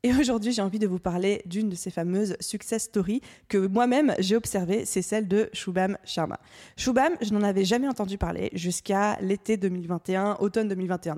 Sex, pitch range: female, 190-235 Hz